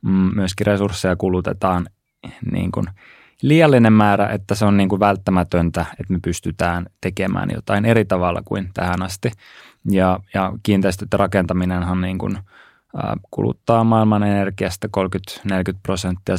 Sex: male